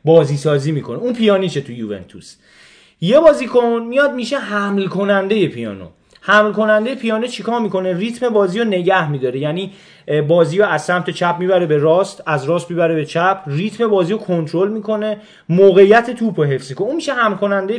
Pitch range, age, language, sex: 160-220 Hz, 30-49, Persian, male